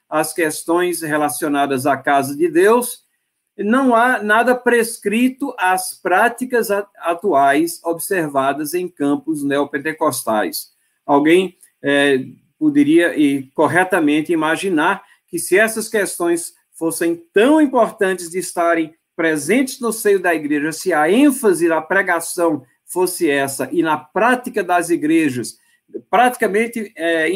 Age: 50-69